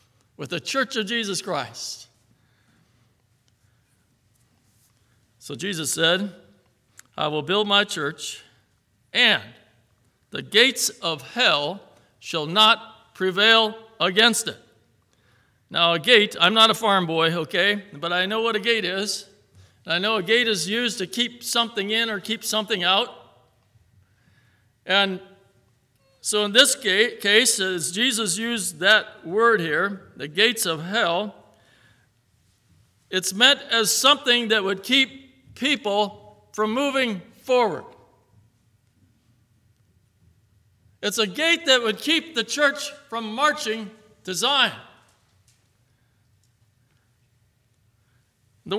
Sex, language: male, English